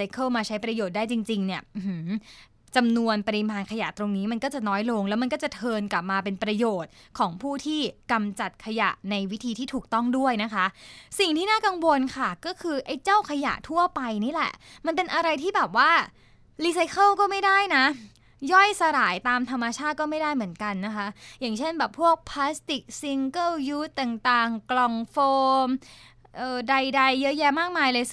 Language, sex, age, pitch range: Thai, female, 20-39, 215-285 Hz